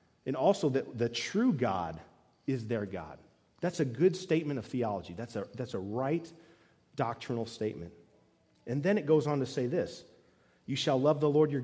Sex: male